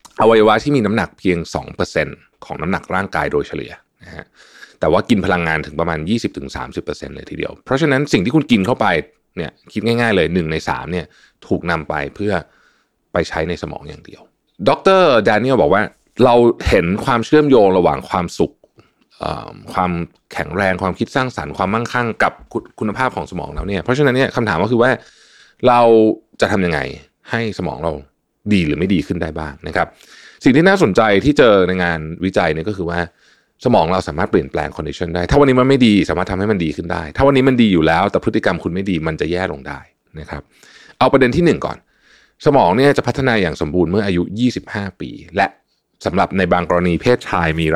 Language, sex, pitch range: Thai, male, 85-115 Hz